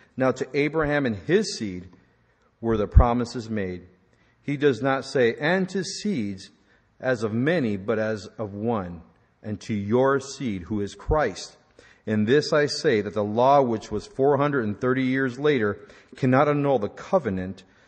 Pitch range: 105-140 Hz